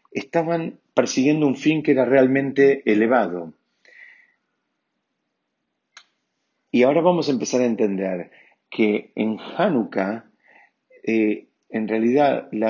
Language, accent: Spanish, Argentinian